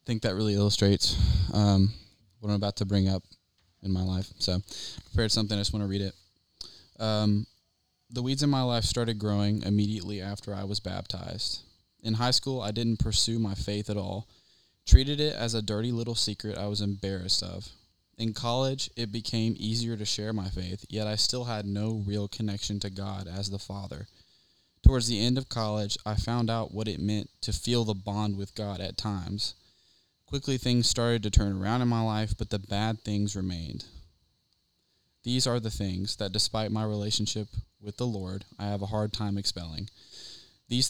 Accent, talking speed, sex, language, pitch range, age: American, 190 wpm, male, English, 100-115 Hz, 10-29